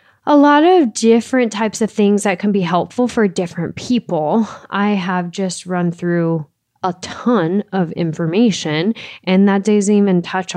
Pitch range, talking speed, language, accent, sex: 175-220 Hz, 160 wpm, English, American, female